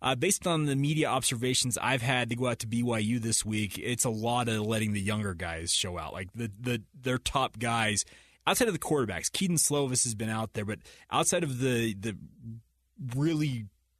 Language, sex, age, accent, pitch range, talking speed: English, male, 30-49, American, 110-135 Hz, 200 wpm